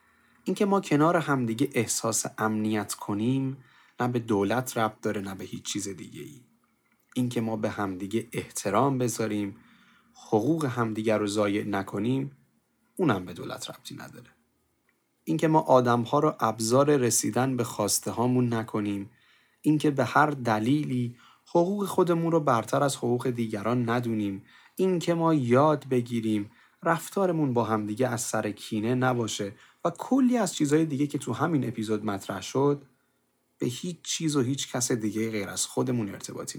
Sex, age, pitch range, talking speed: male, 30-49, 110-140 Hz, 145 wpm